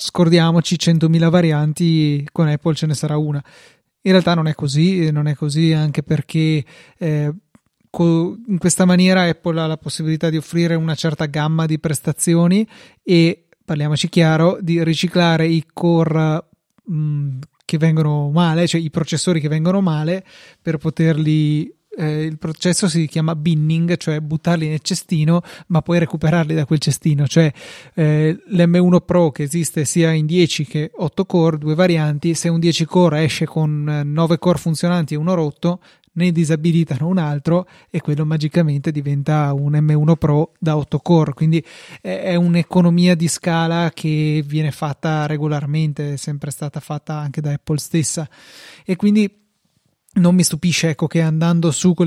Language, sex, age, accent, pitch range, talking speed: Italian, male, 30-49, native, 155-170 Hz, 155 wpm